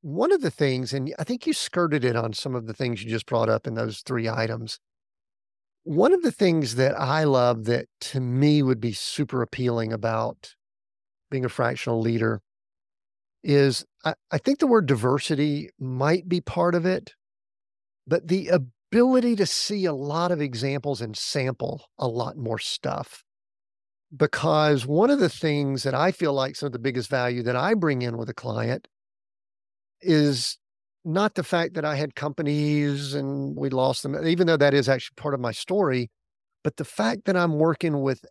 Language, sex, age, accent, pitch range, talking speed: English, male, 50-69, American, 125-165 Hz, 185 wpm